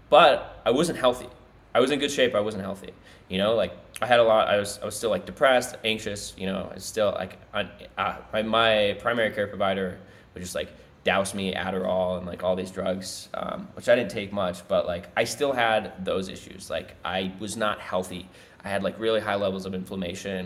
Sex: male